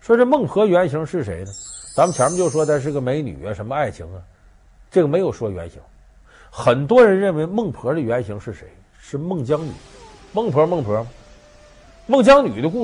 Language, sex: Chinese, male